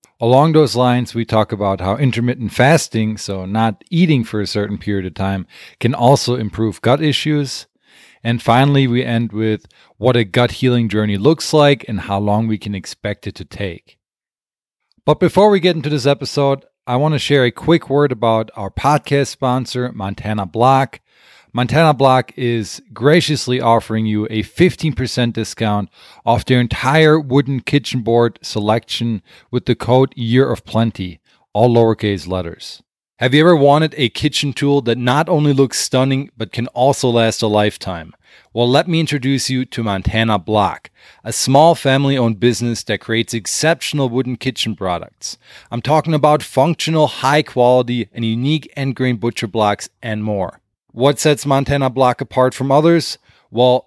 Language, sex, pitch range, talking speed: English, male, 110-140 Hz, 160 wpm